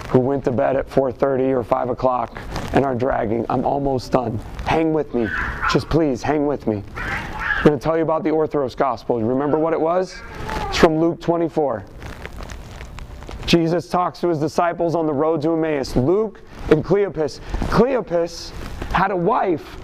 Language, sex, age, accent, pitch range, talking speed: English, male, 30-49, American, 130-175 Hz, 170 wpm